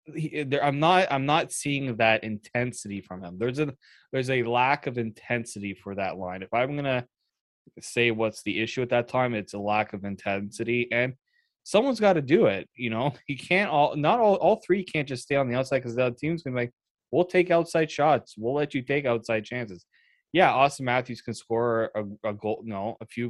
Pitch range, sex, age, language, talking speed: 110-150 Hz, male, 20-39, English, 215 wpm